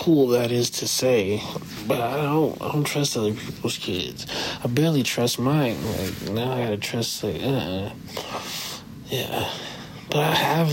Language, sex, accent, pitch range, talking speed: English, male, American, 110-140 Hz, 160 wpm